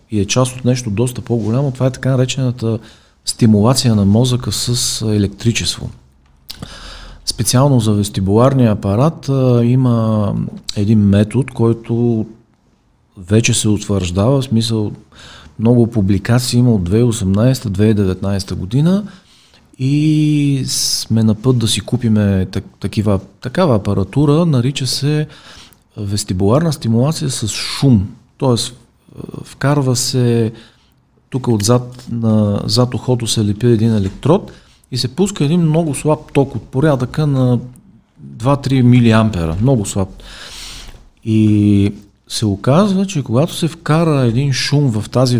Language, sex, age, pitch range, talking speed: Bulgarian, male, 40-59, 105-130 Hz, 115 wpm